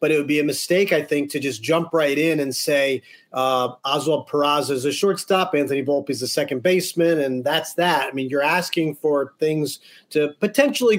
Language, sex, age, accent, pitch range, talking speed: English, male, 30-49, American, 145-180 Hz, 210 wpm